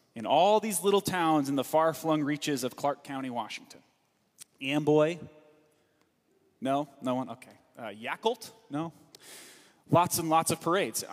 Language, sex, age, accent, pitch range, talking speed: English, male, 30-49, American, 150-200 Hz, 140 wpm